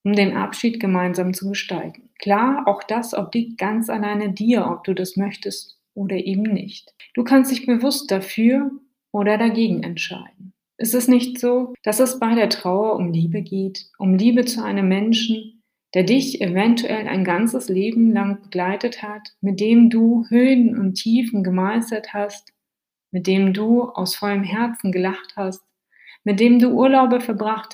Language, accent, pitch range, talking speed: German, German, 190-235 Hz, 160 wpm